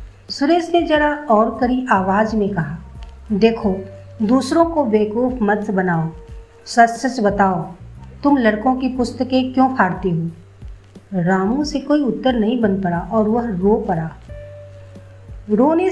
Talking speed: 135 wpm